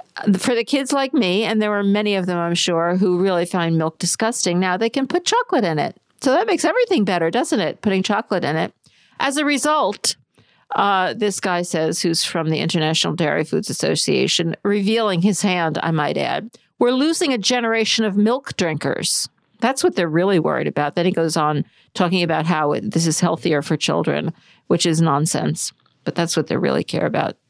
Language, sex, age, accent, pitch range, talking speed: English, female, 50-69, American, 170-225 Hz, 200 wpm